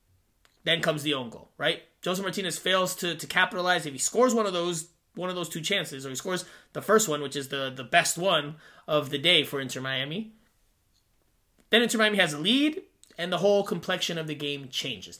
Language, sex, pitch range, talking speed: English, male, 145-195 Hz, 210 wpm